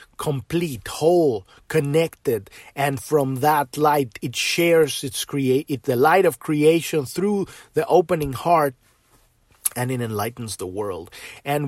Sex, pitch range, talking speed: male, 125-155 Hz, 135 wpm